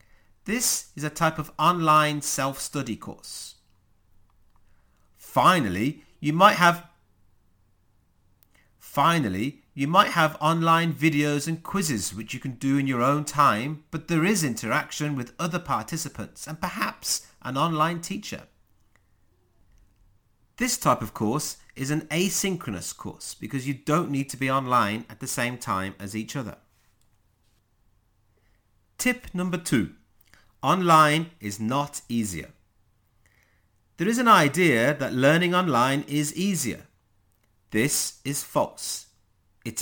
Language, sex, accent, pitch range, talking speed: English, male, British, 100-150 Hz, 125 wpm